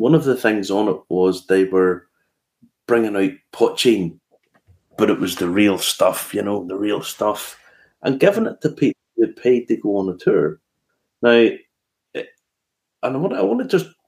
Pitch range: 105-170 Hz